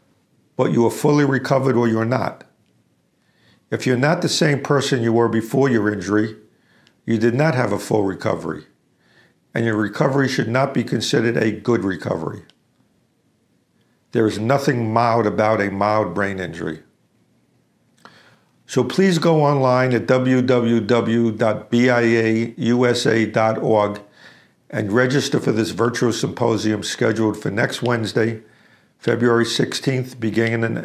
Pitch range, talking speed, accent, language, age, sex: 110-130 Hz, 125 wpm, American, English, 50-69, male